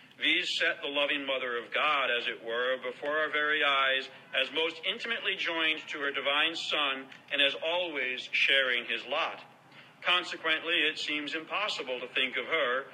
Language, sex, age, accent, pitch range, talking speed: English, male, 50-69, American, 135-170 Hz, 165 wpm